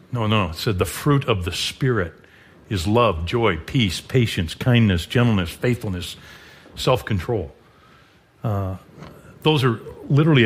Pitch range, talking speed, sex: 95-125 Hz, 130 wpm, male